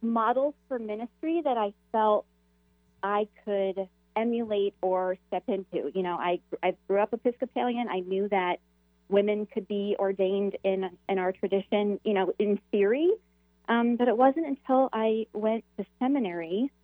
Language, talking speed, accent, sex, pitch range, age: English, 155 wpm, American, female, 175-210 Hz, 30-49